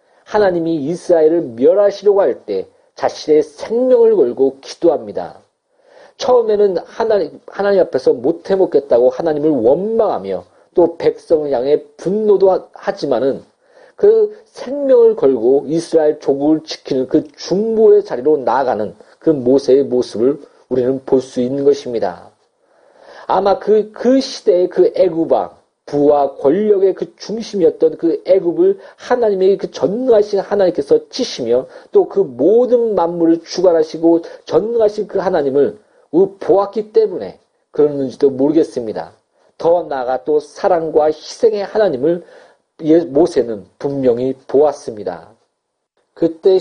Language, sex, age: Korean, male, 40-59